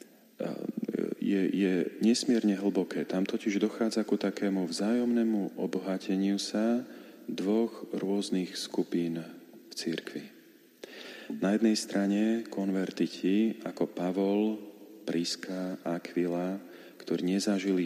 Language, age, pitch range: Slovak, 40-59, 90-100 Hz